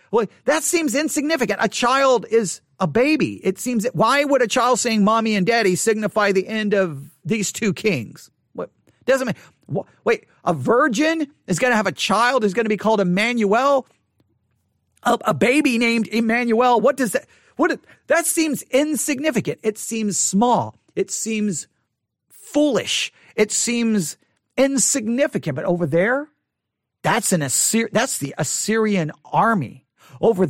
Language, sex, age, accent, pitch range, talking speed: English, male, 40-59, American, 195-285 Hz, 150 wpm